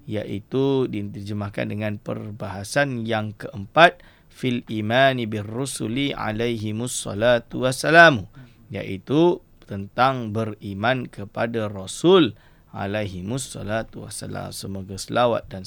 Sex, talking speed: male, 90 wpm